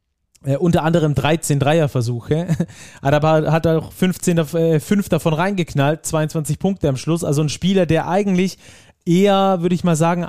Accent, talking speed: German, 180 wpm